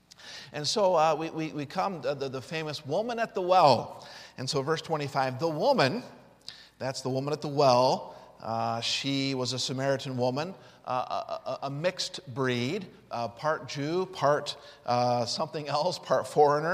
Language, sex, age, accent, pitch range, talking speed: English, male, 50-69, American, 130-175 Hz, 165 wpm